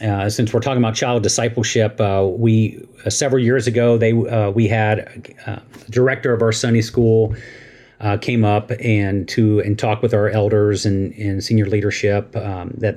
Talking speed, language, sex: 185 wpm, English, male